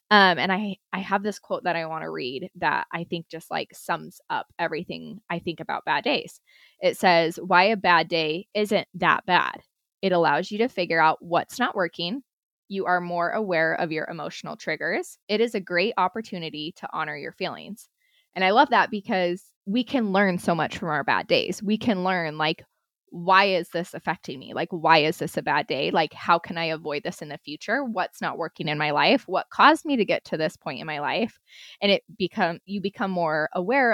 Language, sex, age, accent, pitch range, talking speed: English, female, 20-39, American, 165-210 Hz, 215 wpm